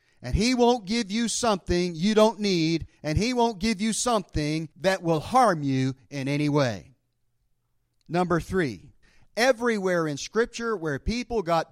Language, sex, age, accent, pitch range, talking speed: English, male, 40-59, American, 140-210 Hz, 155 wpm